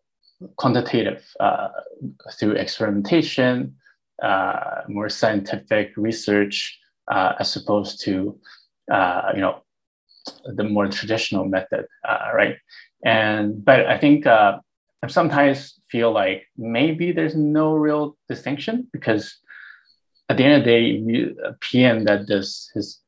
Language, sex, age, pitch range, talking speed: English, male, 20-39, 100-140 Hz, 120 wpm